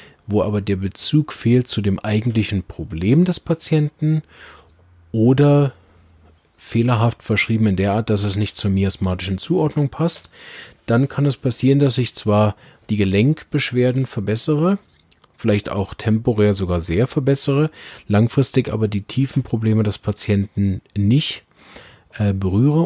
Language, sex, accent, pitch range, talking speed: German, male, German, 95-125 Hz, 130 wpm